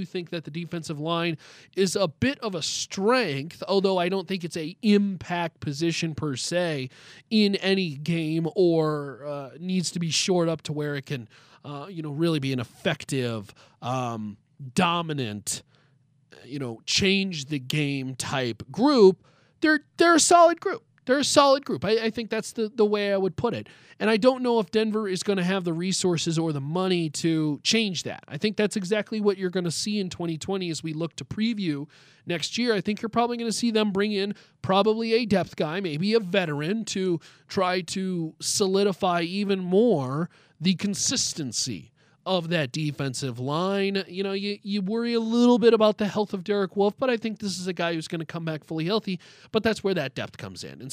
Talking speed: 205 wpm